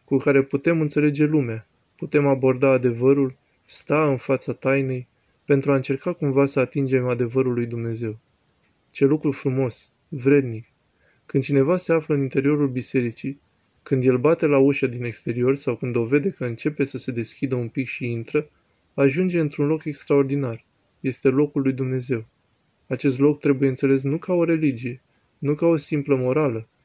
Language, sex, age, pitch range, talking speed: Romanian, male, 20-39, 125-145 Hz, 165 wpm